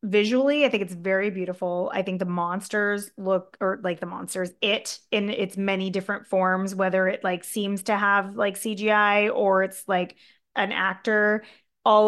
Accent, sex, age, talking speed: American, female, 20-39, 175 wpm